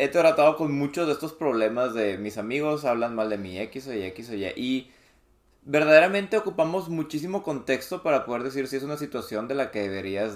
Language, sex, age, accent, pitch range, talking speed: Spanish, male, 20-39, Mexican, 115-155 Hz, 190 wpm